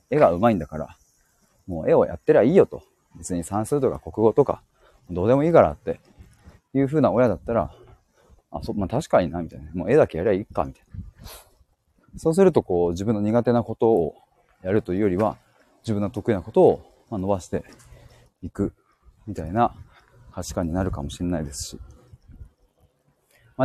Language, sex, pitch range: Japanese, male, 90-120 Hz